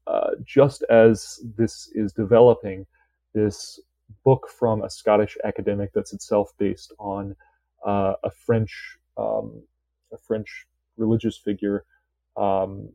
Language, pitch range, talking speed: English, 100-115 Hz, 115 wpm